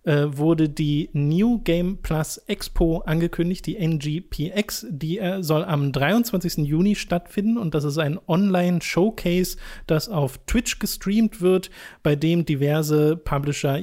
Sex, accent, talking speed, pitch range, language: male, German, 125 wpm, 145-170 Hz, German